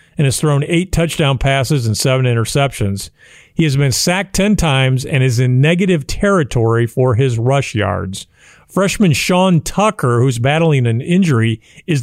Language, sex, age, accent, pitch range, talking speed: English, male, 50-69, American, 130-170 Hz, 160 wpm